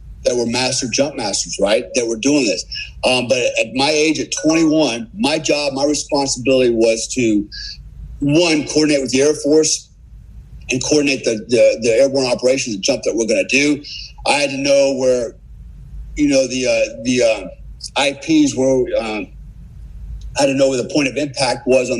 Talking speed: 190 wpm